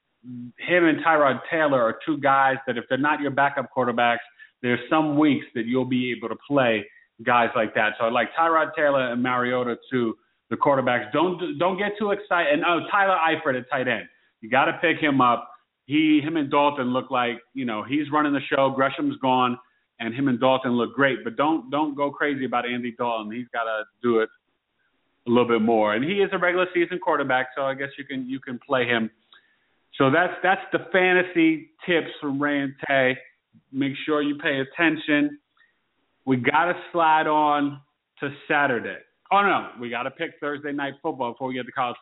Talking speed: 205 wpm